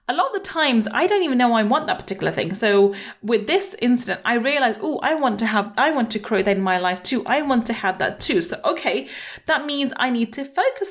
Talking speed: 265 wpm